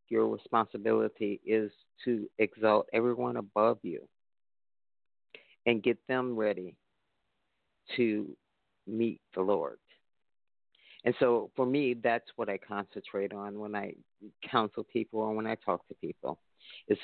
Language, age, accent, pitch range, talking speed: English, 50-69, American, 100-120 Hz, 125 wpm